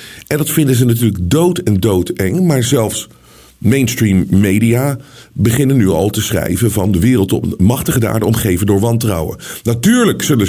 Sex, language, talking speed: male, Dutch, 160 wpm